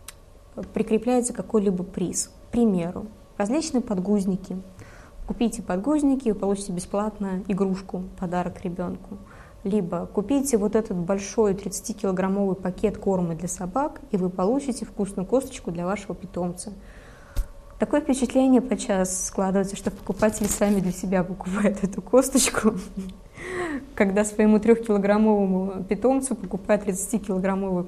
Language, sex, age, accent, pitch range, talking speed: Russian, female, 20-39, native, 185-220 Hz, 115 wpm